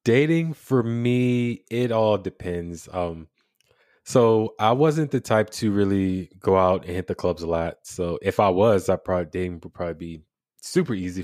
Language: English